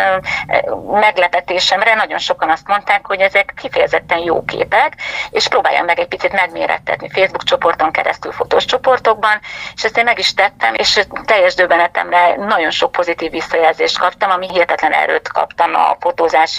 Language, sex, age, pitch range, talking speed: Hungarian, female, 30-49, 170-220 Hz, 150 wpm